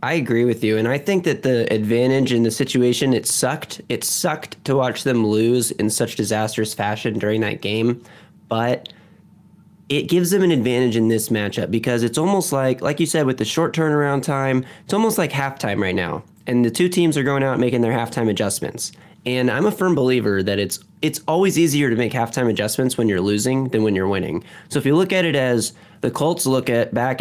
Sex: male